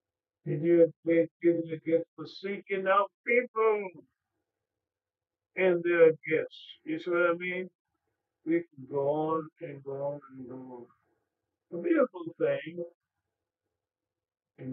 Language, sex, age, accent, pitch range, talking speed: English, male, 50-69, American, 145-185 Hz, 125 wpm